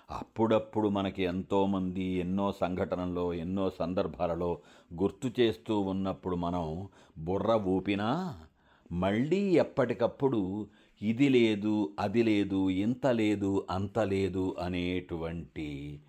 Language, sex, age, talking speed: Telugu, male, 50-69, 90 wpm